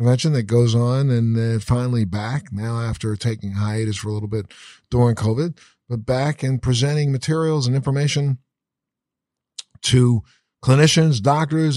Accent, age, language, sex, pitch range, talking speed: American, 50-69, English, male, 115-140 Hz, 140 wpm